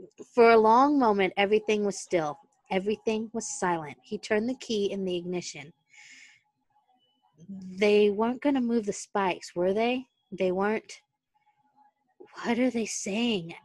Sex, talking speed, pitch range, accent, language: female, 140 wpm, 170-220 Hz, American, English